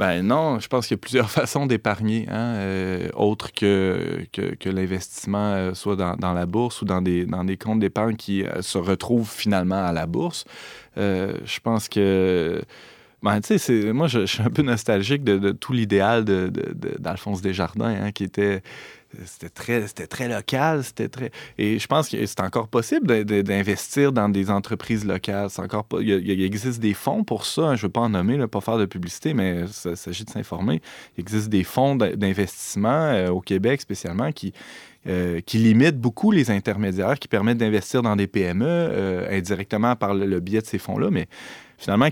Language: French